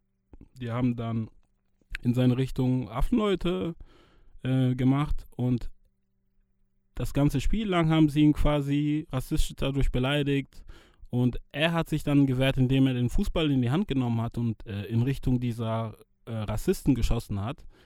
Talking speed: 150 wpm